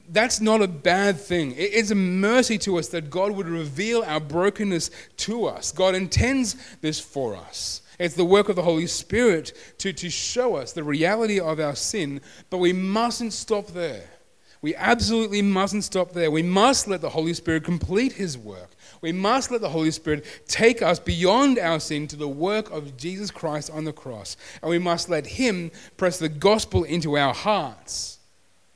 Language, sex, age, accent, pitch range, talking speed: English, male, 30-49, Australian, 150-210 Hz, 185 wpm